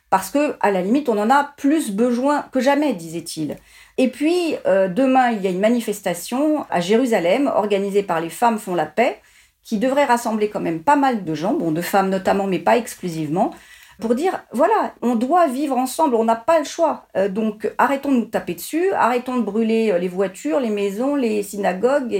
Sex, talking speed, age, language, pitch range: female, 200 wpm, 40-59, French, 200-265 Hz